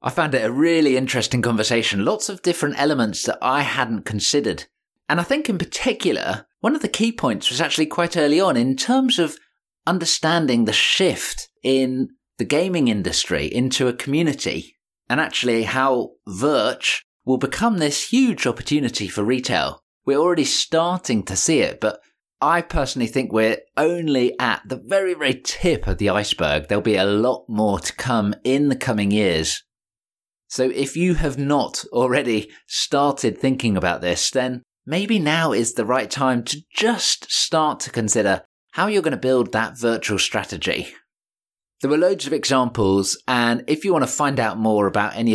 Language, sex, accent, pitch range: English, male, British, 110-160 Hz